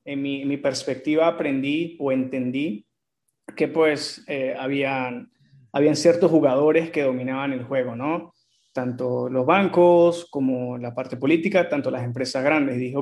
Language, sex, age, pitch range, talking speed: English, male, 30-49, 130-160 Hz, 150 wpm